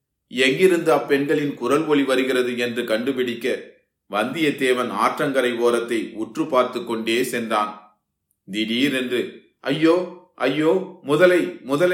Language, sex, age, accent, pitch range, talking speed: Tamil, male, 30-49, native, 120-150 Hz, 55 wpm